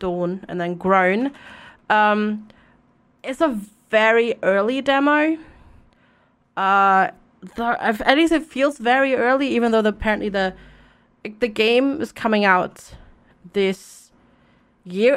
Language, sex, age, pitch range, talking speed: English, female, 30-49, 205-270 Hz, 120 wpm